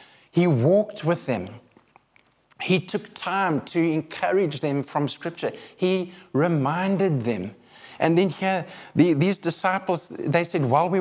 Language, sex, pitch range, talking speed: English, male, 145-180 Hz, 130 wpm